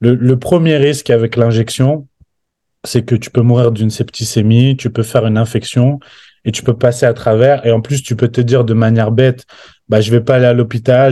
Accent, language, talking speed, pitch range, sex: French, French, 220 wpm, 115-135 Hz, male